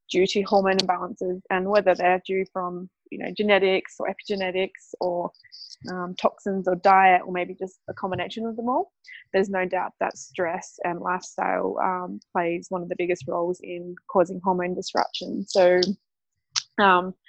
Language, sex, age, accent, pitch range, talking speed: English, female, 20-39, Australian, 180-200 Hz, 165 wpm